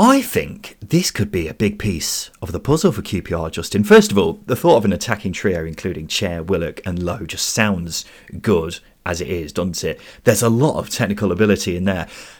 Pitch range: 95-155 Hz